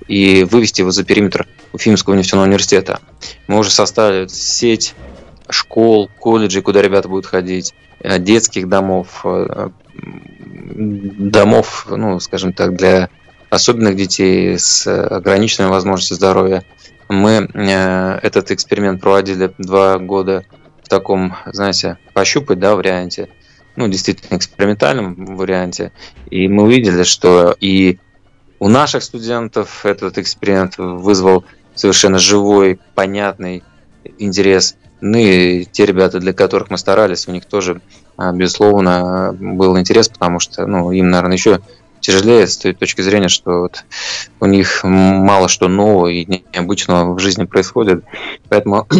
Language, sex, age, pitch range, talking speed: Russian, male, 20-39, 90-100 Hz, 120 wpm